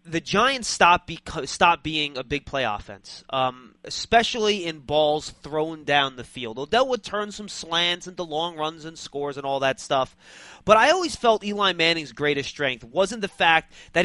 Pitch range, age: 145-210 Hz, 30-49